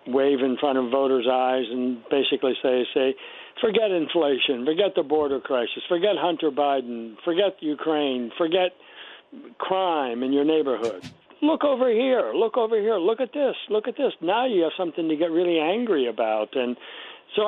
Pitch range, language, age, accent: 145-215 Hz, English, 60-79, American